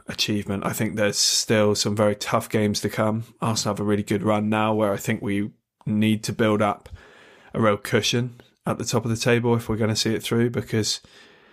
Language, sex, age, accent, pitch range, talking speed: English, male, 20-39, British, 105-115 Hz, 225 wpm